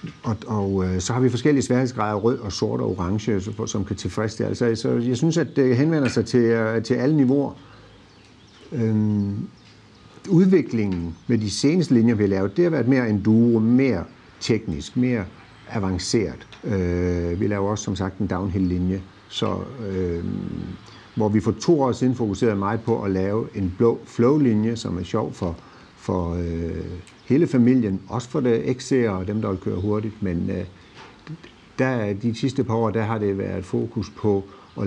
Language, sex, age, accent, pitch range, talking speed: Danish, male, 60-79, native, 95-120 Hz, 175 wpm